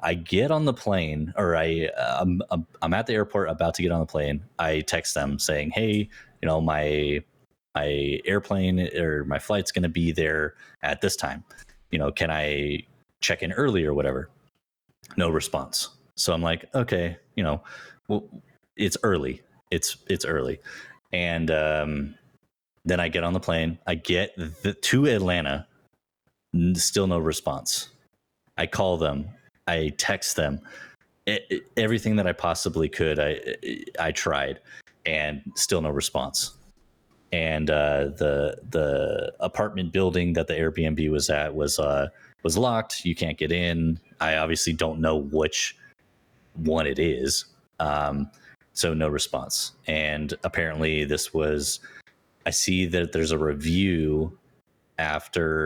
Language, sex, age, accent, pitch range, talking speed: English, male, 30-49, American, 75-90 Hz, 150 wpm